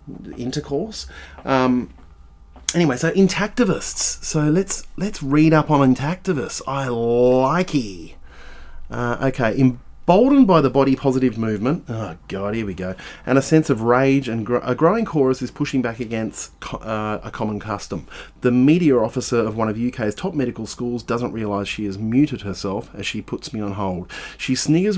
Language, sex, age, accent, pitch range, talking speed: English, male, 30-49, Australian, 120-175 Hz, 170 wpm